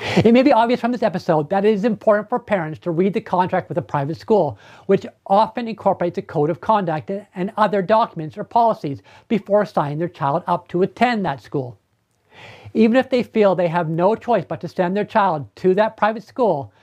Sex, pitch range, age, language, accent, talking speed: male, 170-210 Hz, 50-69, English, American, 210 wpm